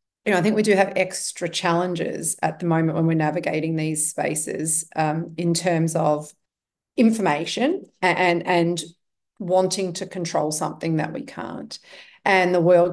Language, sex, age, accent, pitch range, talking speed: English, female, 40-59, Australian, 160-195 Hz, 160 wpm